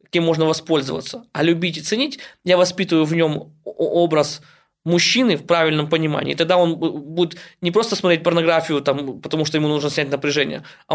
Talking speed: 175 wpm